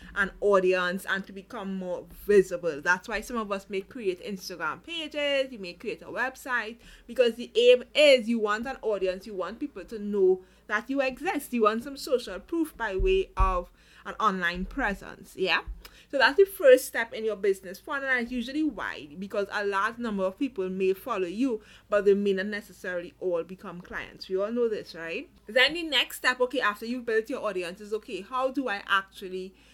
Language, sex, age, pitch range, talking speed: English, female, 30-49, 190-255 Hz, 200 wpm